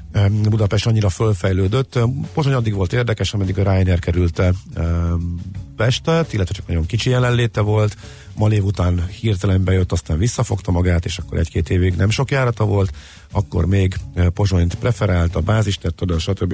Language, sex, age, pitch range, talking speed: Hungarian, male, 50-69, 90-110 Hz, 150 wpm